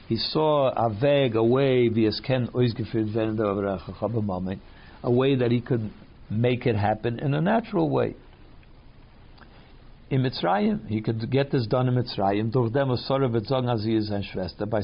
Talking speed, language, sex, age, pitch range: 115 wpm, English, male, 60-79, 110-140 Hz